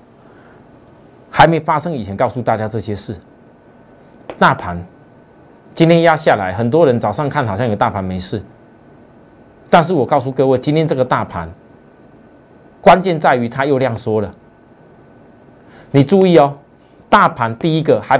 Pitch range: 110-160 Hz